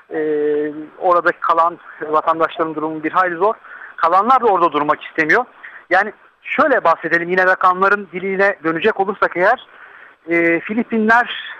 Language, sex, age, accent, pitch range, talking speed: Turkish, male, 50-69, native, 170-225 Hz, 125 wpm